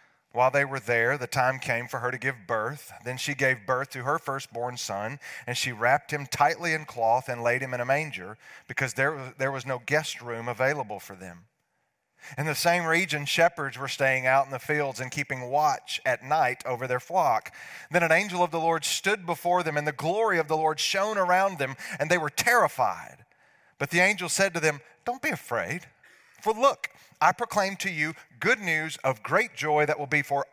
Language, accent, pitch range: English, American, 135-175 Hz